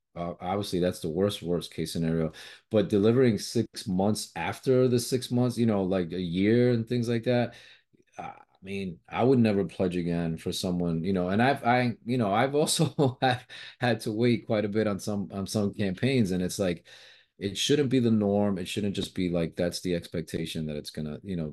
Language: English